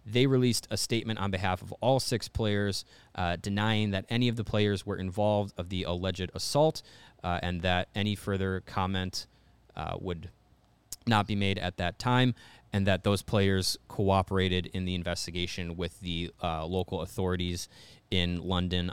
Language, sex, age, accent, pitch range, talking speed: English, male, 20-39, American, 90-115 Hz, 165 wpm